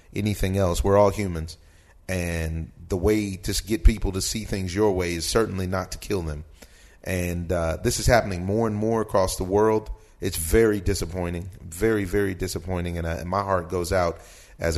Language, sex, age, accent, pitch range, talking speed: English, male, 30-49, American, 85-100 Hz, 190 wpm